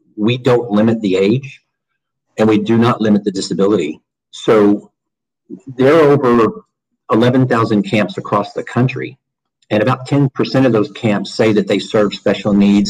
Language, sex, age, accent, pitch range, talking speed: English, male, 50-69, American, 105-125 Hz, 155 wpm